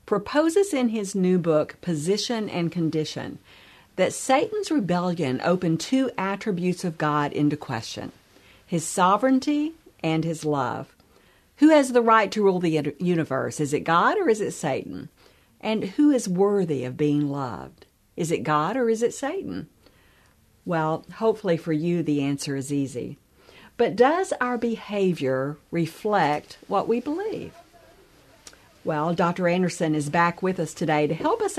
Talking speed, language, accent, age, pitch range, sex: 150 wpm, English, American, 50-69, 150-210 Hz, female